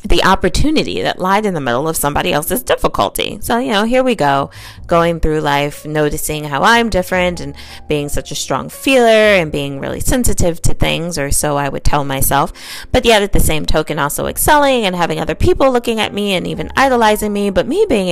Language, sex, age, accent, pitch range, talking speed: English, female, 20-39, American, 140-180 Hz, 210 wpm